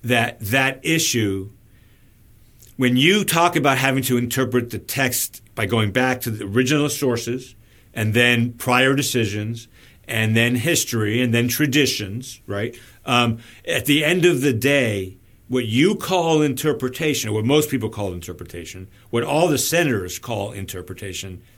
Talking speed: 145 wpm